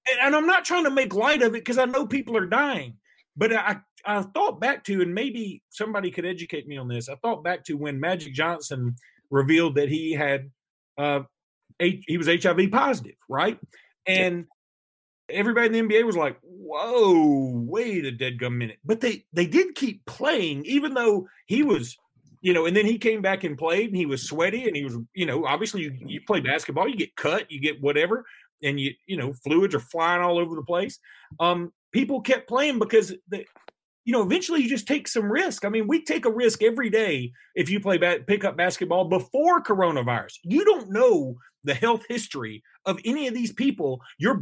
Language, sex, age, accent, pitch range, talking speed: English, male, 40-59, American, 160-235 Hz, 205 wpm